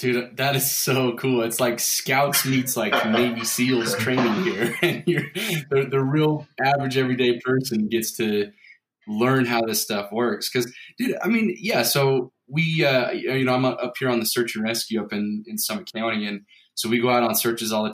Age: 20-39